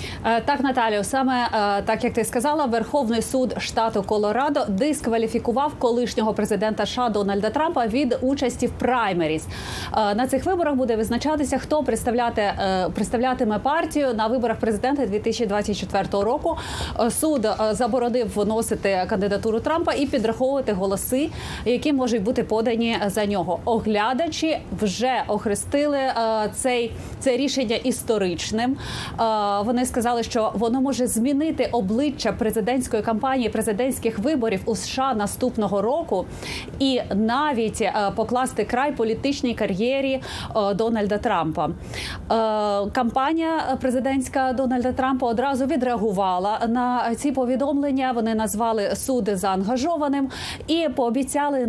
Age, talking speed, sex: 30-49, 110 wpm, female